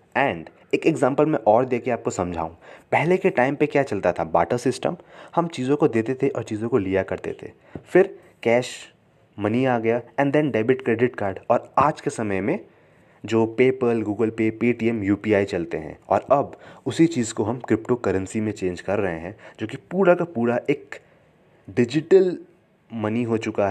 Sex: male